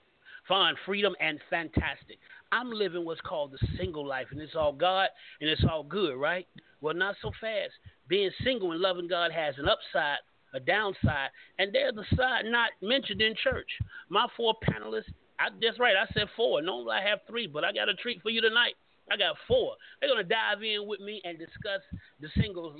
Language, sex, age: English, male, 30-49